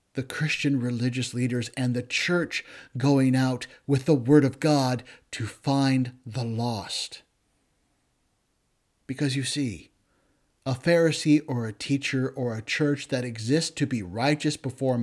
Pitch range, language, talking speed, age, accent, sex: 120-145 Hz, English, 140 wpm, 50-69, American, male